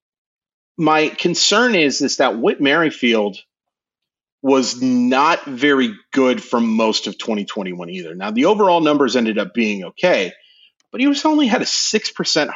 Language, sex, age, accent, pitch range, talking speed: English, male, 40-59, American, 115-175 Hz, 145 wpm